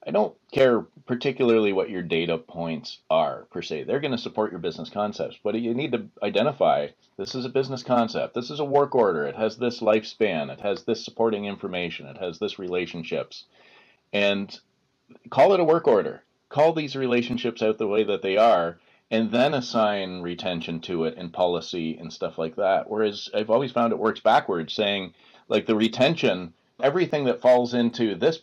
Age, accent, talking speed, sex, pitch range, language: 30-49, American, 190 wpm, male, 95-120 Hz, English